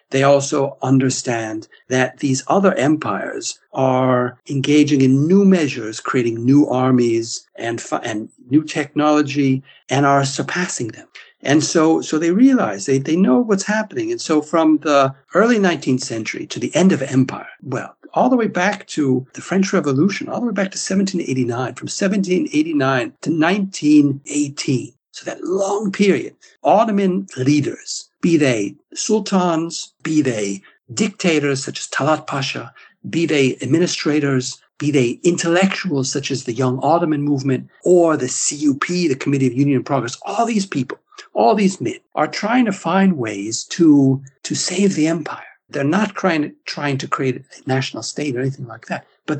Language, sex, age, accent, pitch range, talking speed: English, male, 60-79, American, 135-190 Hz, 160 wpm